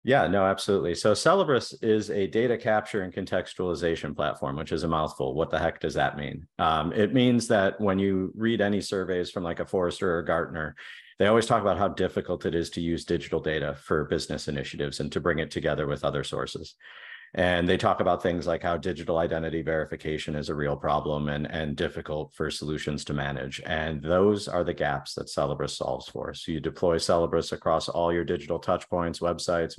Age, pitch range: 40-59, 80-95 Hz